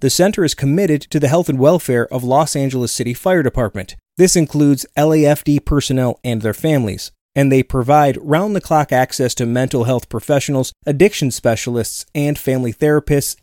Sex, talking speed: male, 160 wpm